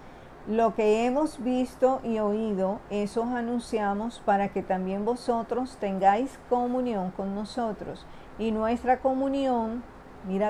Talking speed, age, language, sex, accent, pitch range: 120 wpm, 50-69, Spanish, female, American, 195-245 Hz